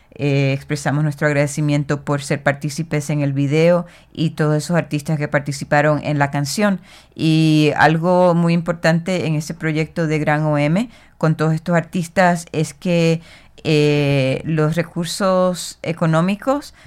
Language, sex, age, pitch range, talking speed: Spanish, female, 30-49, 150-170 Hz, 135 wpm